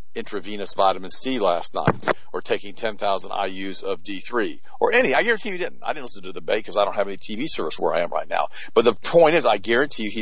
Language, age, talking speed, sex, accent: English, 50-69, 260 wpm, male, American